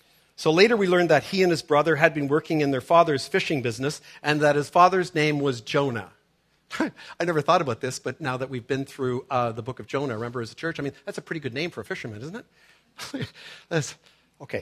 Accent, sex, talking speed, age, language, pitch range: American, male, 240 wpm, 50-69, English, 135-160 Hz